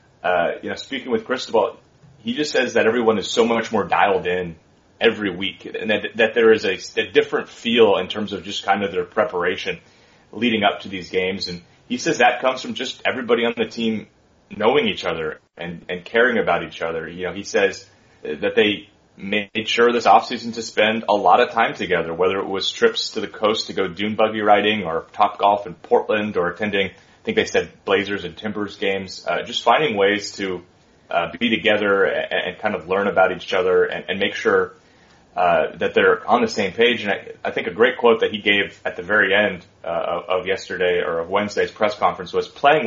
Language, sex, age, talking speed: English, male, 30-49, 220 wpm